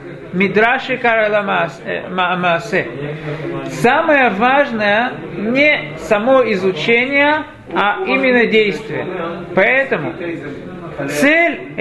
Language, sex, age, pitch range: Russian, male, 50-69, 170-245 Hz